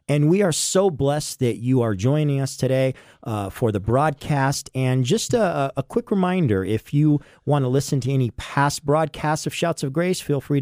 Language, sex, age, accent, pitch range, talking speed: English, male, 40-59, American, 125-155 Hz, 205 wpm